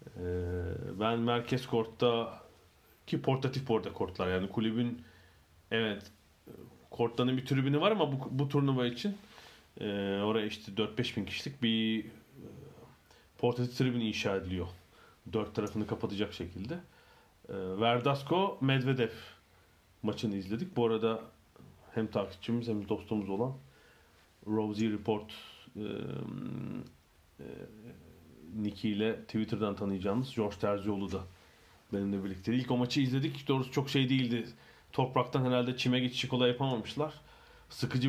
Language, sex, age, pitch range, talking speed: Turkish, male, 40-59, 105-130 Hz, 110 wpm